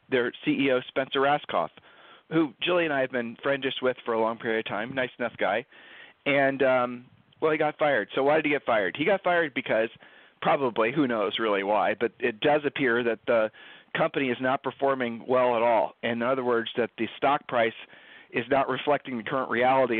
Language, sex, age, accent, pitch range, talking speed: English, male, 40-59, American, 120-150 Hz, 205 wpm